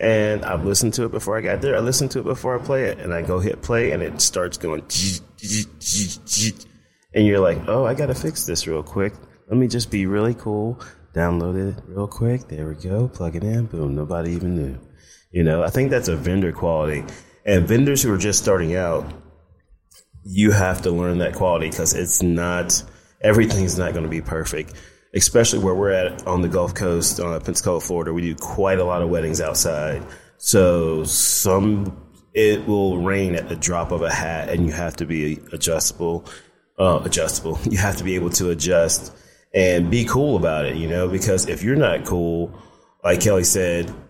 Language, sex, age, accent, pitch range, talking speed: English, male, 30-49, American, 85-105 Hz, 200 wpm